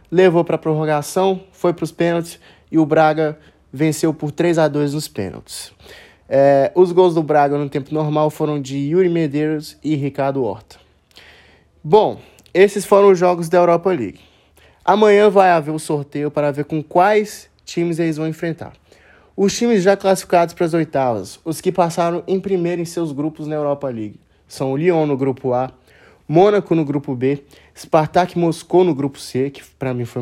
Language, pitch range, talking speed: Portuguese, 135-175 Hz, 175 wpm